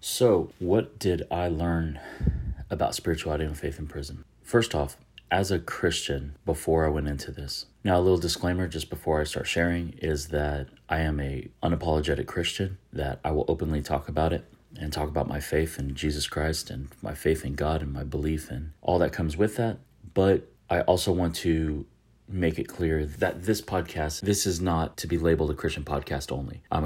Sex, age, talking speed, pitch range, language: male, 30-49, 195 wpm, 75-85 Hz, English